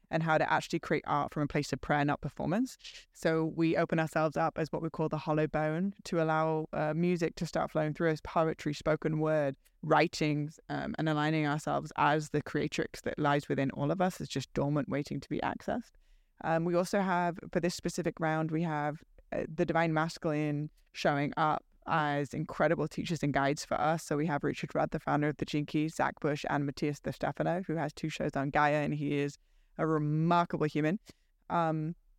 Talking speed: 205 wpm